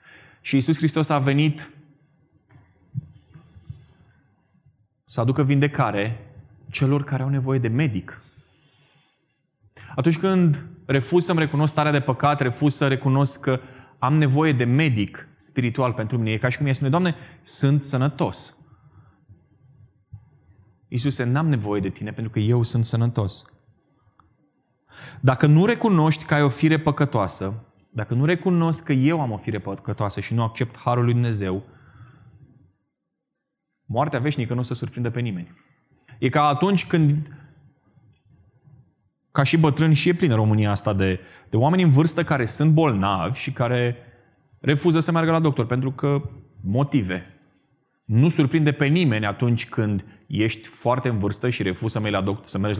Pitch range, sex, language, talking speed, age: 110-145 Hz, male, Romanian, 145 wpm, 20-39